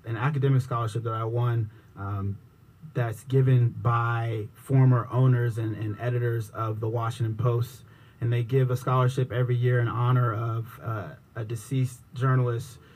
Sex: male